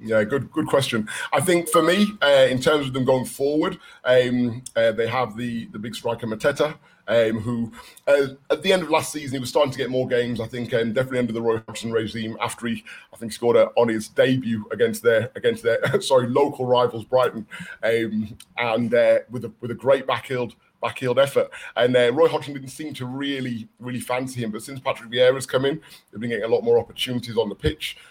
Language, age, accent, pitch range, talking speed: English, 30-49, British, 115-135 Hz, 220 wpm